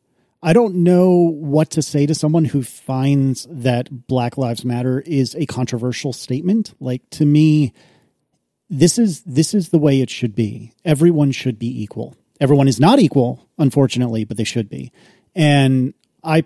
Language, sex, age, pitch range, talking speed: English, male, 40-59, 120-155 Hz, 165 wpm